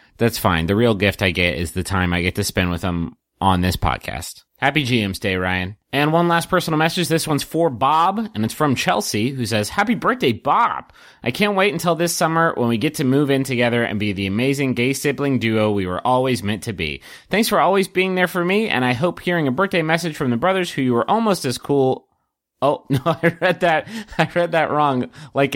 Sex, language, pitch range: male, English, 100-160 Hz